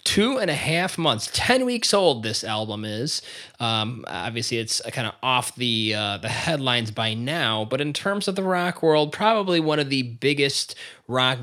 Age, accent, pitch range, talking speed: 20-39, American, 120-155 Hz, 190 wpm